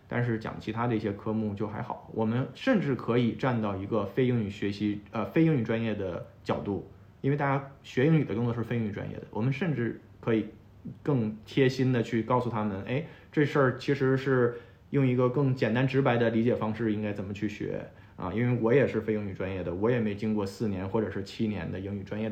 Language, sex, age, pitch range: Chinese, male, 20-39, 105-135 Hz